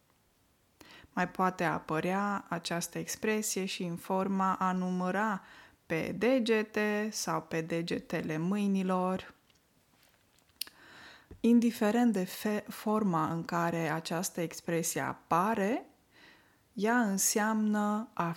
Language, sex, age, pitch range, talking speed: Romanian, female, 20-39, 170-220 Hz, 90 wpm